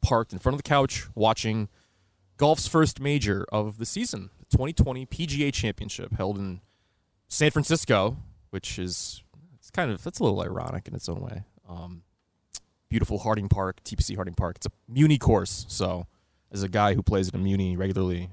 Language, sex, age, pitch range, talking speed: English, male, 20-39, 90-110 Hz, 185 wpm